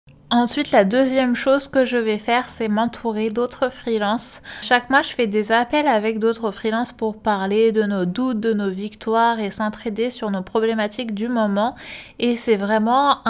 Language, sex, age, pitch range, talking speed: French, female, 20-39, 205-235 Hz, 175 wpm